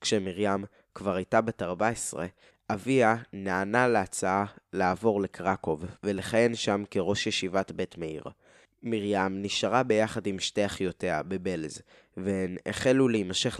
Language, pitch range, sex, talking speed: Hebrew, 95-120 Hz, male, 115 wpm